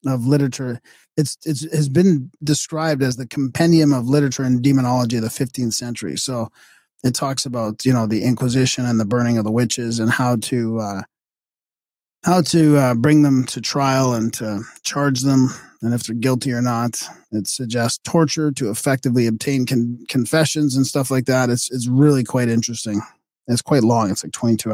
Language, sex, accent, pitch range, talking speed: English, male, American, 115-140 Hz, 185 wpm